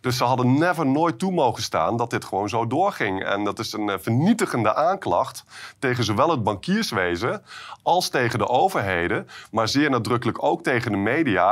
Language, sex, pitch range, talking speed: Dutch, male, 100-140 Hz, 175 wpm